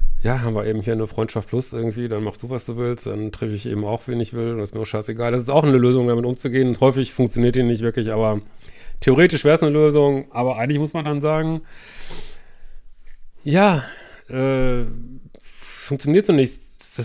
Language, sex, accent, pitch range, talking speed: German, male, German, 115-145 Hz, 210 wpm